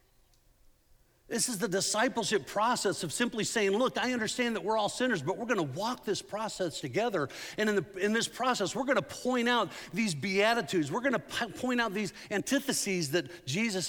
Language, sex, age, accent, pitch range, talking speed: English, male, 50-69, American, 160-235 Hz, 190 wpm